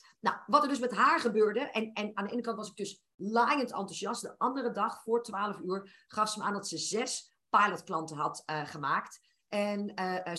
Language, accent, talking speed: Dutch, Dutch, 215 wpm